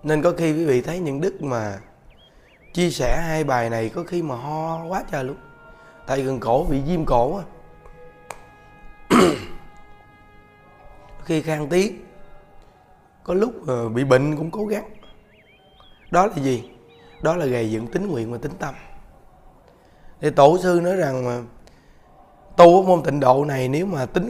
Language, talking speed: Vietnamese, 155 wpm